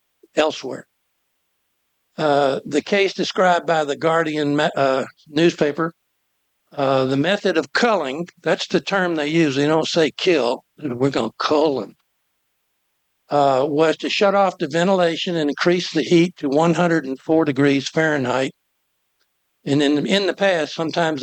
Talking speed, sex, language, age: 145 wpm, male, English, 60-79